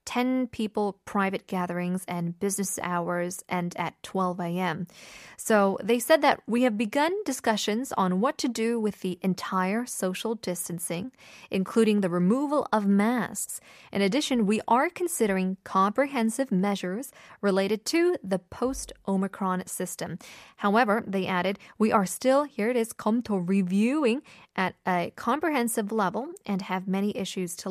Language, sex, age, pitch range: Korean, female, 20-39, 185-230 Hz